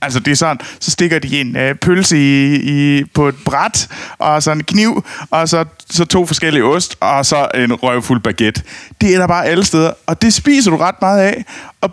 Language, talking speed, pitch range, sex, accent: Danish, 220 wpm, 125-200 Hz, male, native